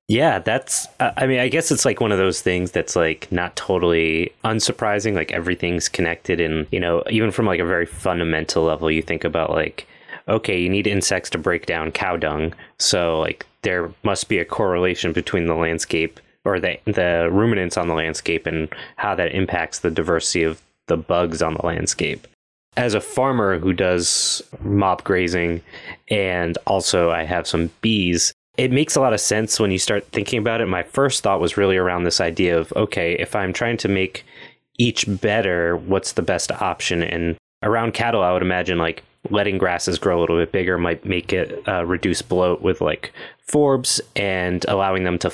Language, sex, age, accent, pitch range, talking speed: English, male, 20-39, American, 85-100 Hz, 190 wpm